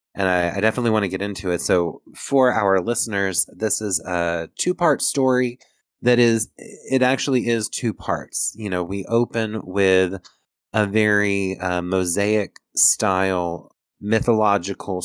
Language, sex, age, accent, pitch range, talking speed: English, male, 30-49, American, 90-110 Hz, 140 wpm